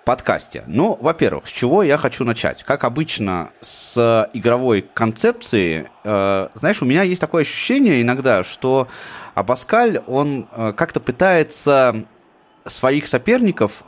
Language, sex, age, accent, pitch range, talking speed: Russian, male, 20-39, native, 105-145 Hz, 125 wpm